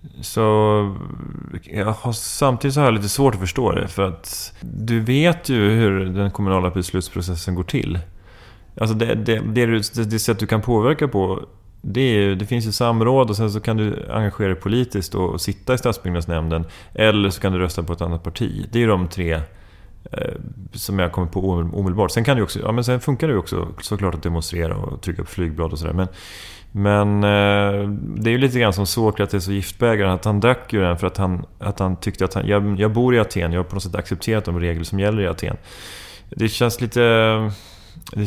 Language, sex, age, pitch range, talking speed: English, male, 30-49, 90-115 Hz, 215 wpm